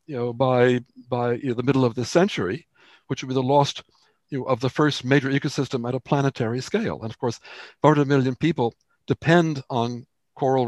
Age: 60-79